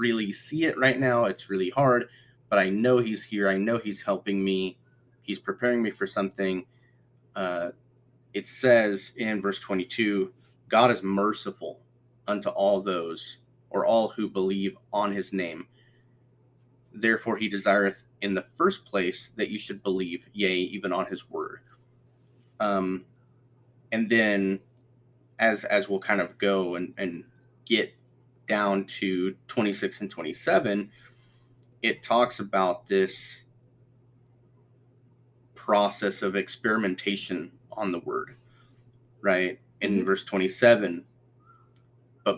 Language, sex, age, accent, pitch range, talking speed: English, male, 30-49, American, 100-125 Hz, 125 wpm